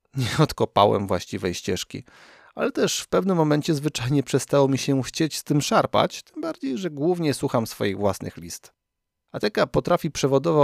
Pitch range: 115-170 Hz